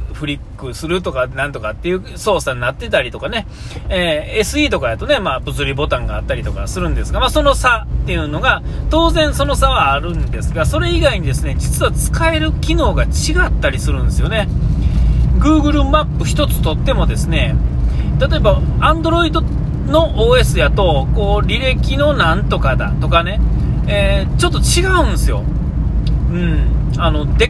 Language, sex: Japanese, male